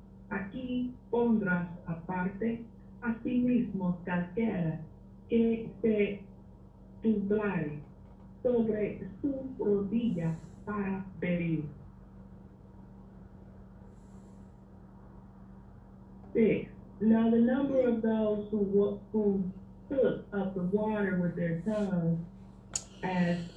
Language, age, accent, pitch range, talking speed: English, 40-59, American, 165-220 Hz, 80 wpm